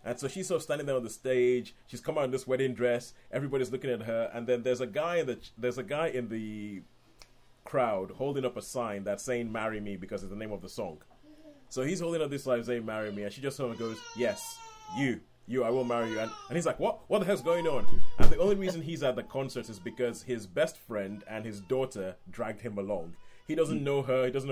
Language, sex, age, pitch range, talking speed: English, male, 30-49, 115-155 Hz, 260 wpm